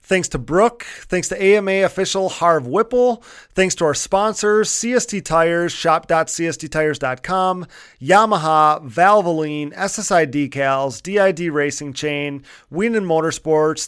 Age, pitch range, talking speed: 30-49, 150-190 Hz, 110 wpm